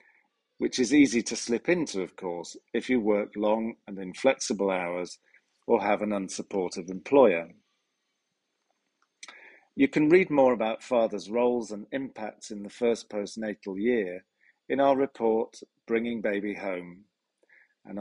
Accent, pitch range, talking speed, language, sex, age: British, 100-130 Hz, 135 wpm, English, male, 40-59